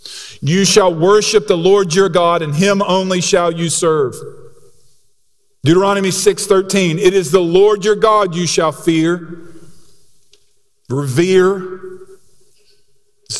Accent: American